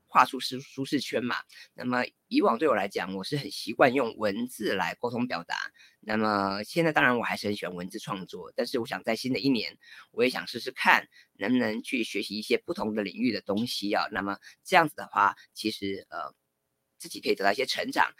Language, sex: Chinese, female